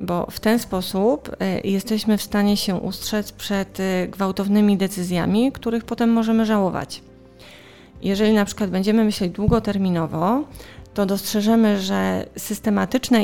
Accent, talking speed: native, 120 wpm